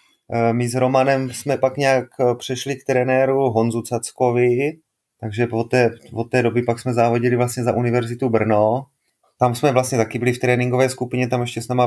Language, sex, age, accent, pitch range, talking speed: Czech, male, 30-49, native, 110-125 Hz, 180 wpm